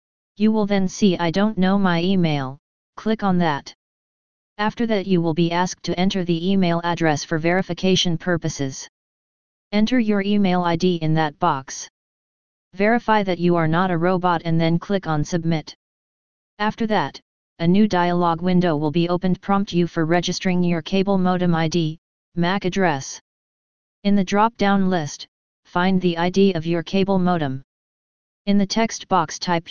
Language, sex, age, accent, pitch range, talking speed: English, female, 30-49, American, 165-195 Hz, 165 wpm